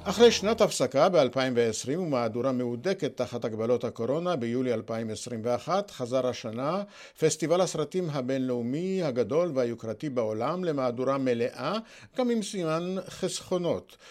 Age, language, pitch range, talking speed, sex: 50-69, Hebrew, 125-185 Hz, 105 wpm, male